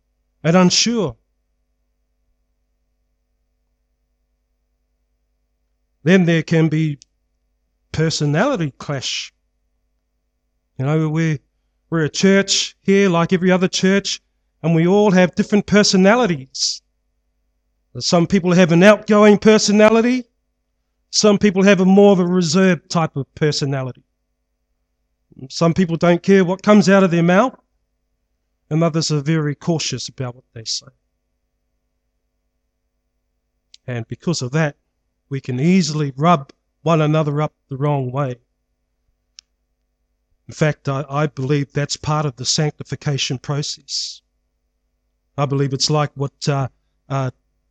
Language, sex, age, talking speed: English, male, 40-59, 115 wpm